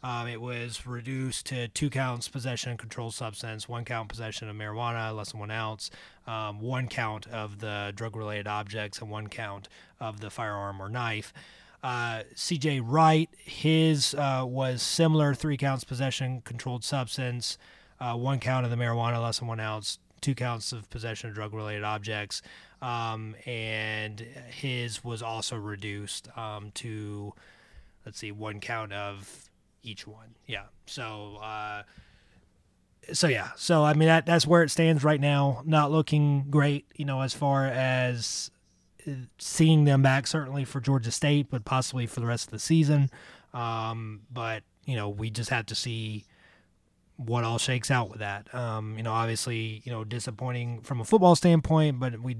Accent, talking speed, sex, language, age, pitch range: American, 165 wpm, male, English, 30-49, 110-130 Hz